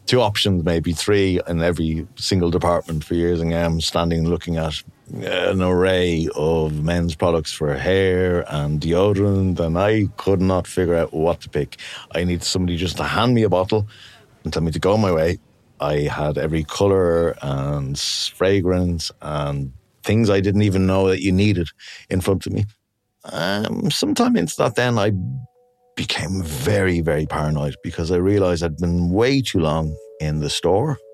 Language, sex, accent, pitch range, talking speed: English, male, Irish, 85-110 Hz, 170 wpm